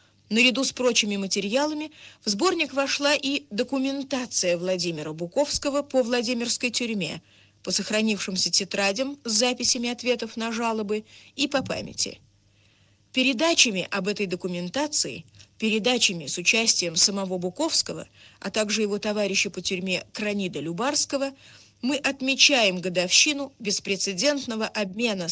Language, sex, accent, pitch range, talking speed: Russian, female, native, 185-265 Hz, 110 wpm